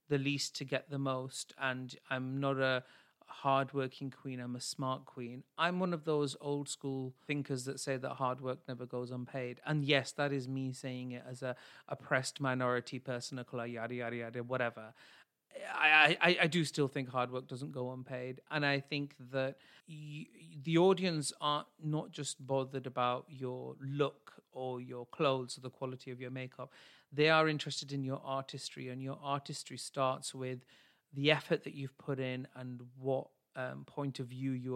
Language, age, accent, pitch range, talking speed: English, 40-59, British, 130-145 Hz, 185 wpm